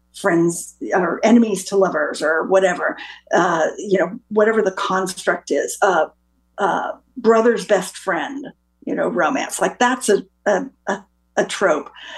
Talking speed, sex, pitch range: 150 wpm, female, 190-225 Hz